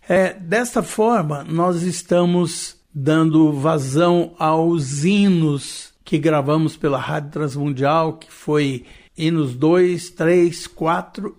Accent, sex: Brazilian, male